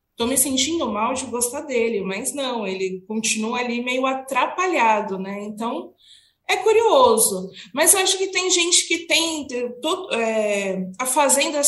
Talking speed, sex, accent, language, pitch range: 150 wpm, female, Brazilian, Portuguese, 210-280 Hz